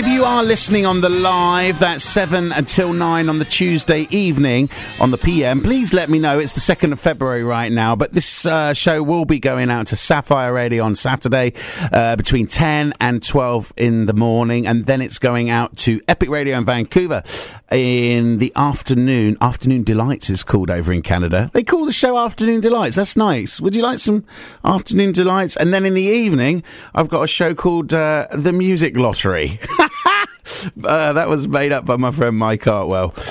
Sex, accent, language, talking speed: male, British, English, 195 wpm